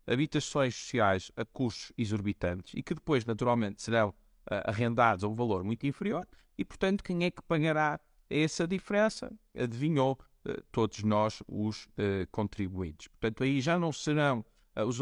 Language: Portuguese